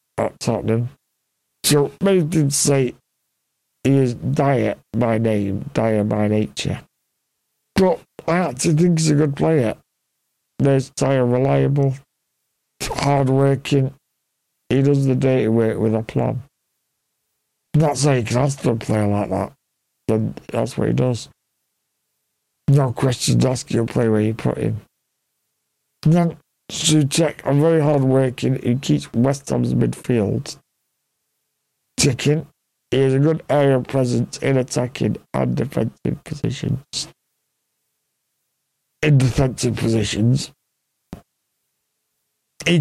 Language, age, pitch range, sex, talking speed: English, 60-79, 120-145 Hz, male, 120 wpm